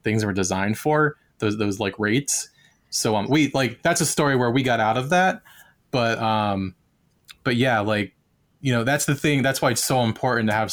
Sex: male